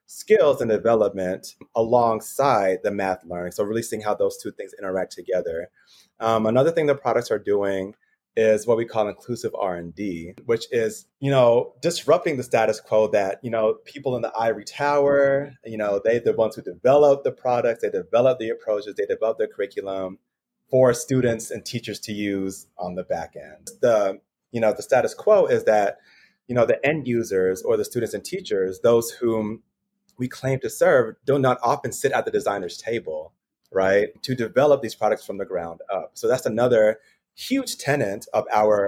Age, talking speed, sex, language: 30-49, 190 wpm, male, English